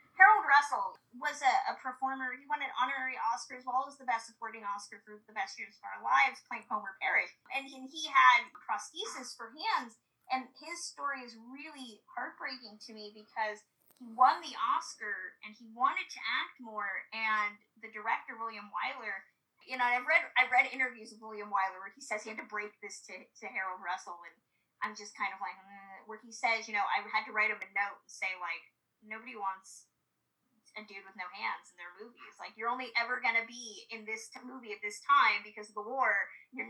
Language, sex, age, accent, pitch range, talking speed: English, female, 20-39, American, 210-255 Hz, 215 wpm